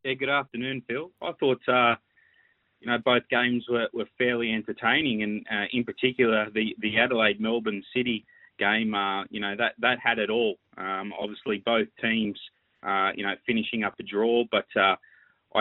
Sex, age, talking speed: male, 20-39, 175 wpm